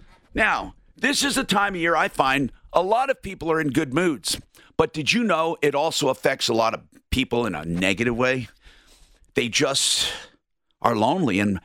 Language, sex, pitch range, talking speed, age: English, male, 115-170 Hz, 190 wpm, 50-69